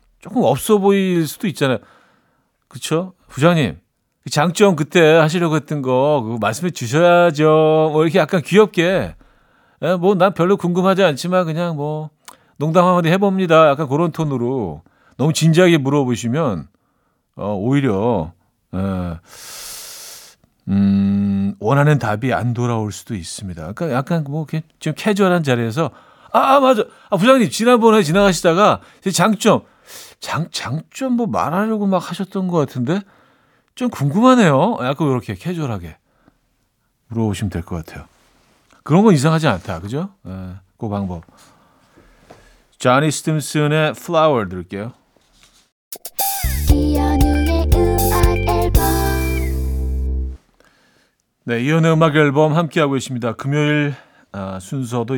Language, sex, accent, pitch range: Korean, male, native, 105-175 Hz